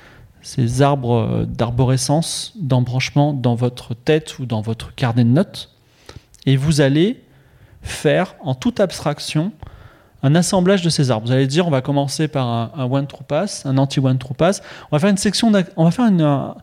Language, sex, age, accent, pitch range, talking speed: French, male, 30-49, French, 130-160 Hz, 185 wpm